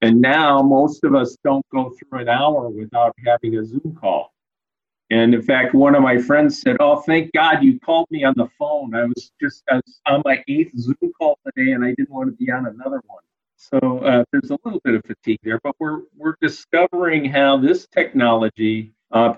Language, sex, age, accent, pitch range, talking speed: English, male, 50-69, American, 115-165 Hz, 215 wpm